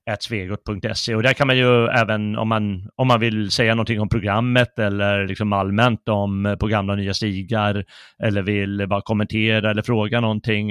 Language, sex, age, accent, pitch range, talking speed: Swedish, male, 30-49, native, 100-125 Hz, 175 wpm